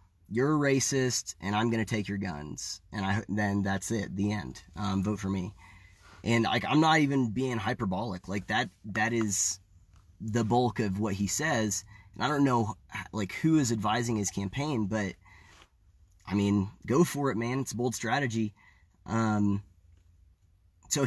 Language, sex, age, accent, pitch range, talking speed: English, male, 30-49, American, 100-125 Hz, 170 wpm